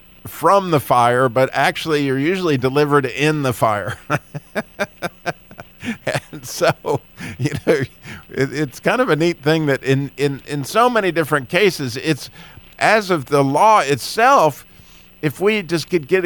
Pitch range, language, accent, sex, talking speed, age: 125-170 Hz, English, American, male, 150 wpm, 50-69